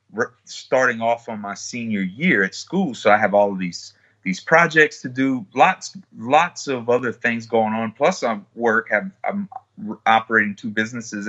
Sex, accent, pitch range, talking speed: male, American, 105-145 Hz, 170 wpm